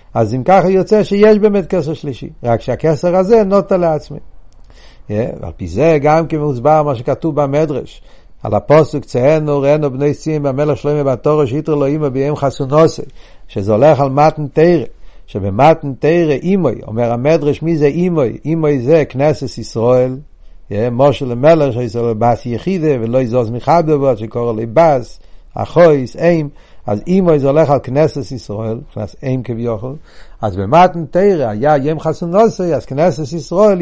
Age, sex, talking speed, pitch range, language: 60-79, male, 160 wpm, 130-170 Hz, Hebrew